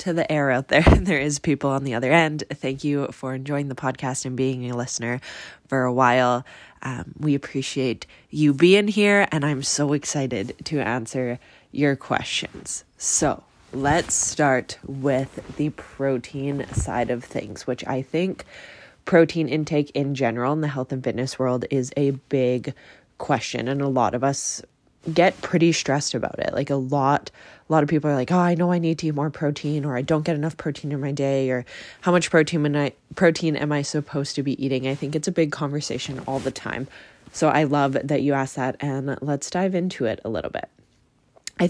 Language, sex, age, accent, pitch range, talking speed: English, female, 20-39, American, 135-160 Hz, 195 wpm